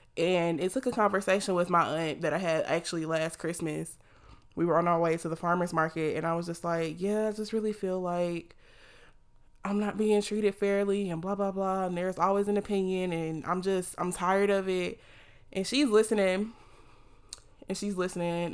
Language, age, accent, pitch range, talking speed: English, 20-39, American, 160-185 Hz, 195 wpm